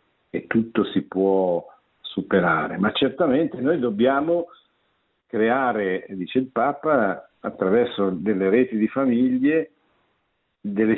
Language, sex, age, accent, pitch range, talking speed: Italian, male, 50-69, native, 95-120 Hz, 105 wpm